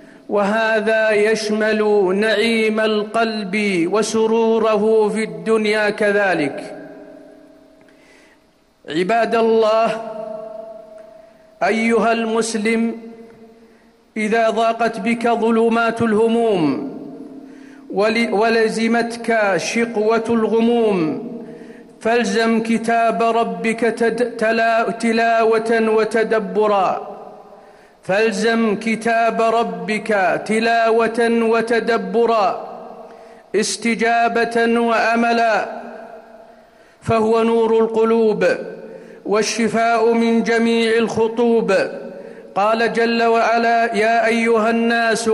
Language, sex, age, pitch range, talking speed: Arabic, male, 50-69, 220-230 Hz, 60 wpm